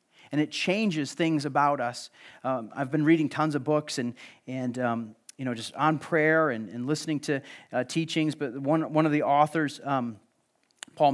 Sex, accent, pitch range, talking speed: male, American, 135-170 Hz, 190 wpm